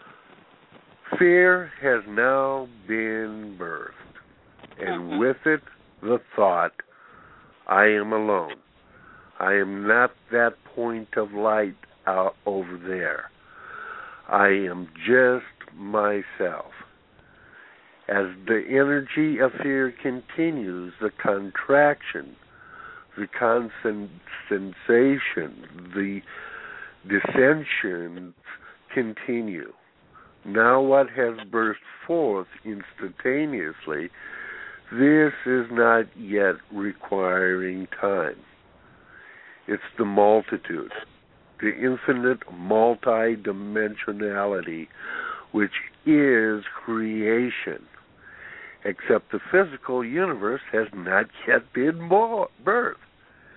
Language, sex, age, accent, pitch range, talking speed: English, male, 60-79, American, 100-135 Hz, 80 wpm